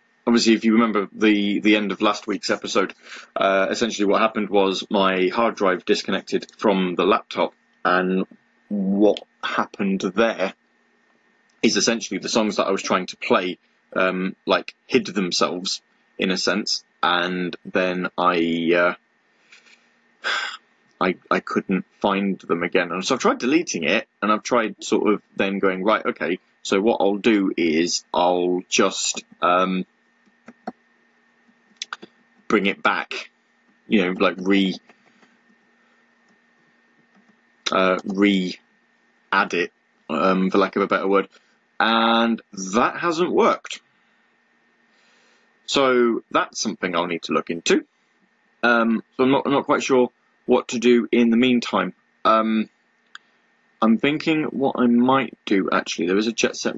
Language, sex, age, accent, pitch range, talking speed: English, male, 20-39, British, 95-115 Hz, 140 wpm